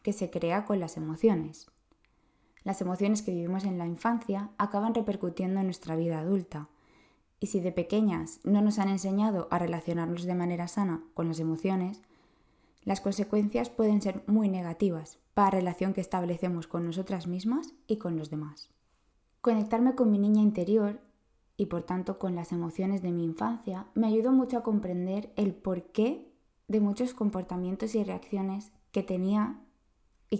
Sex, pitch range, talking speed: female, 180-215 Hz, 160 wpm